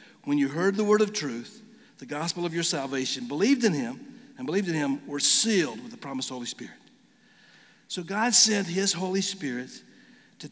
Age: 60-79